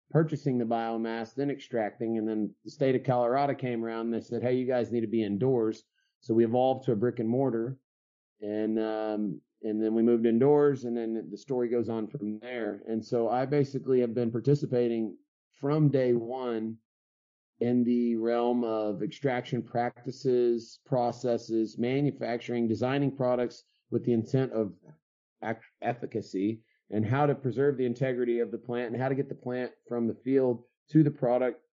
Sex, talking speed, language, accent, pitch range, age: male, 175 wpm, English, American, 110-125 Hz, 30-49